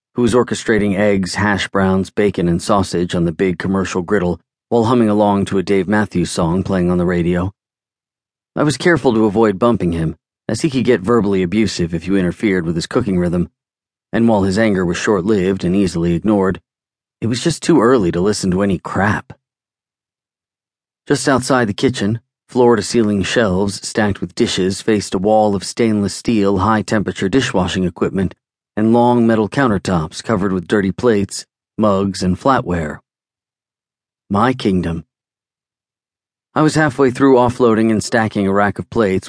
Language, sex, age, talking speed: English, male, 40-59, 165 wpm